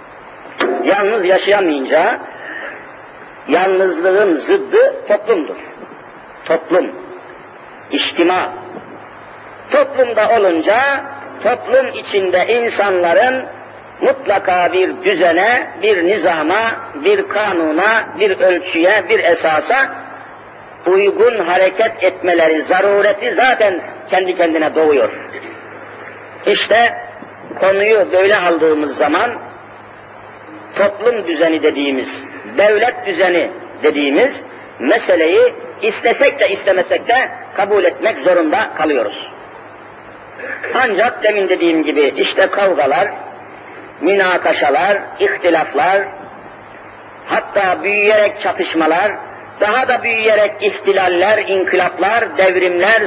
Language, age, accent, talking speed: Turkish, 50-69, native, 75 wpm